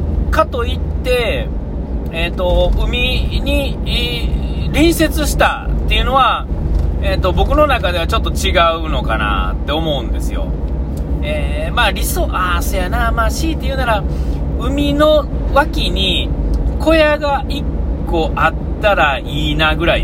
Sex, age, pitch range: male, 40-59, 70-80 Hz